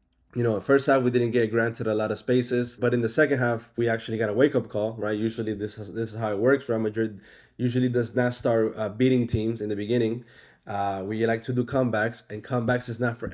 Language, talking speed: English, 250 wpm